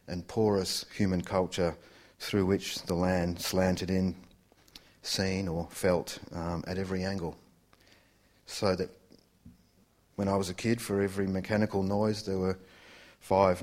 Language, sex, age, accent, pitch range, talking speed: English, male, 40-59, Australian, 90-105 Hz, 135 wpm